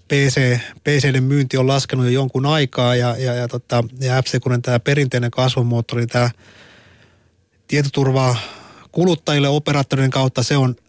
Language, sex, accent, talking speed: Finnish, male, native, 120 wpm